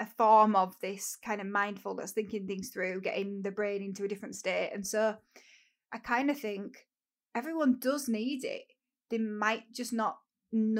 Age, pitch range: 10-29, 200-240 Hz